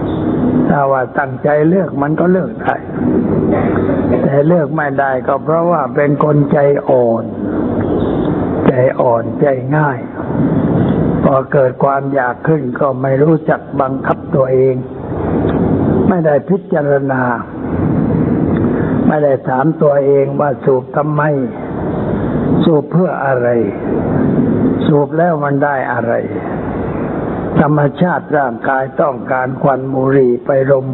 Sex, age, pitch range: male, 60-79, 130-155 Hz